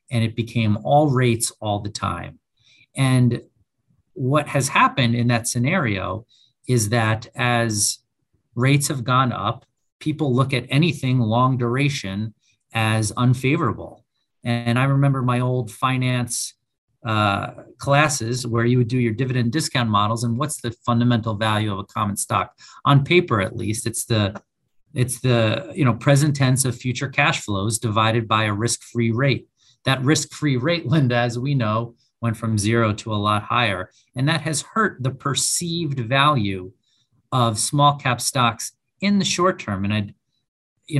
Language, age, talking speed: English, 40-59, 160 wpm